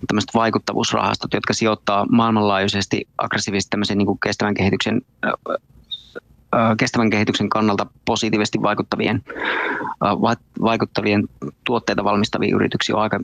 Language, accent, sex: Finnish, native, male